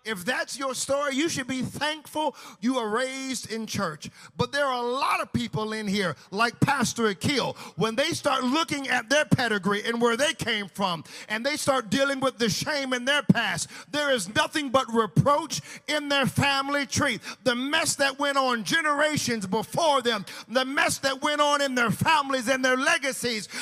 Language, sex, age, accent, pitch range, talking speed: English, male, 40-59, American, 255-325 Hz, 190 wpm